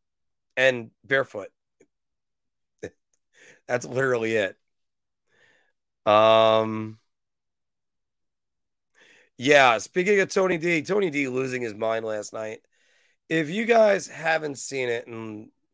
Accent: American